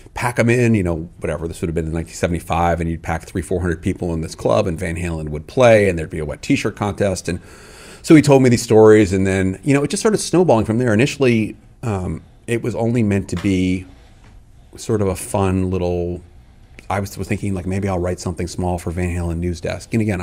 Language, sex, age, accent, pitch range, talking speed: English, male, 30-49, American, 90-105 Hz, 240 wpm